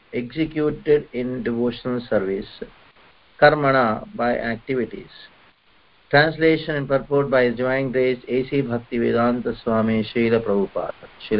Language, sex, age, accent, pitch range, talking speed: English, male, 50-69, Indian, 120-150 Hz, 95 wpm